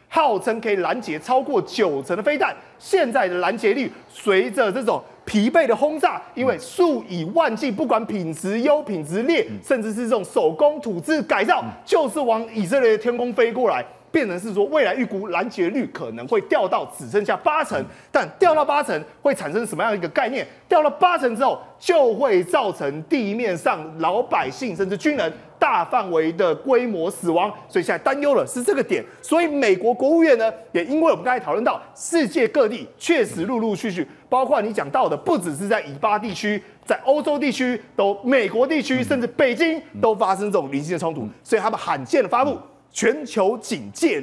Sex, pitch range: male, 215-315 Hz